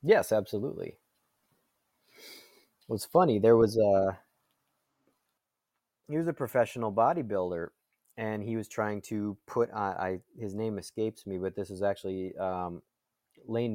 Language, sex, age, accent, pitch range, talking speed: English, male, 20-39, American, 95-115 Hz, 130 wpm